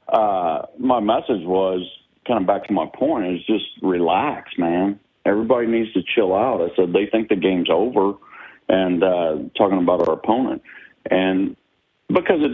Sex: male